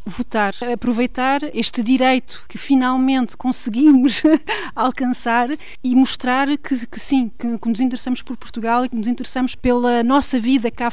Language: Portuguese